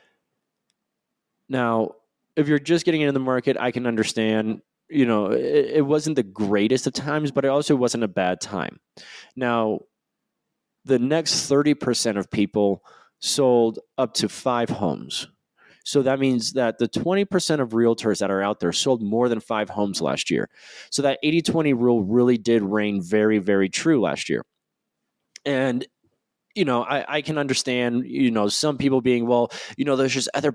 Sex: male